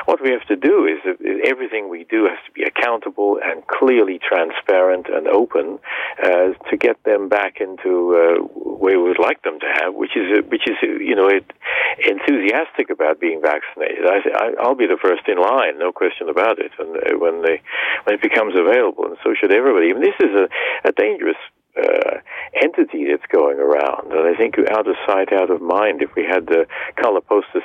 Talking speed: 205 wpm